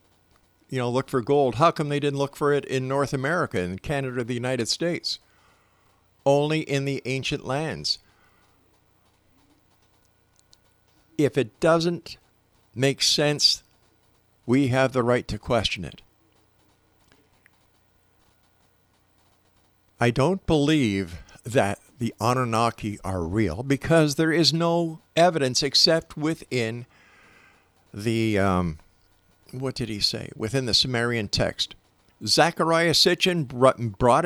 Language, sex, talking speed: English, male, 115 wpm